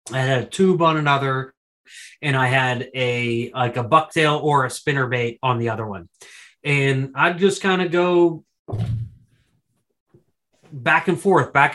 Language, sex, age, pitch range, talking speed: English, male, 30-49, 125-150 Hz, 160 wpm